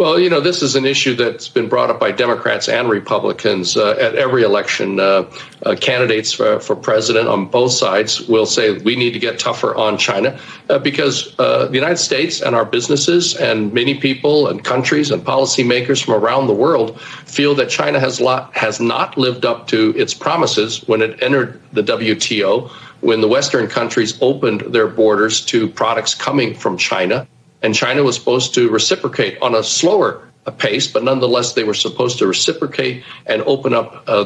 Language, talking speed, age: English, 185 wpm, 50-69